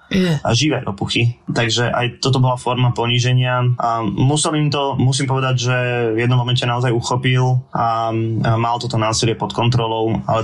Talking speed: 160 wpm